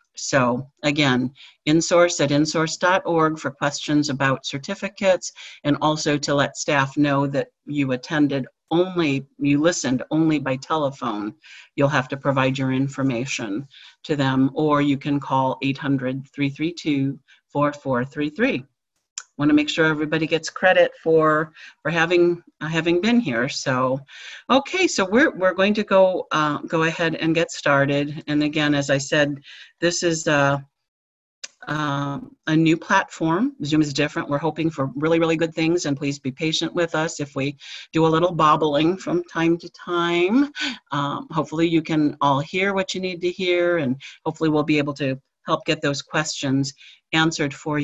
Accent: American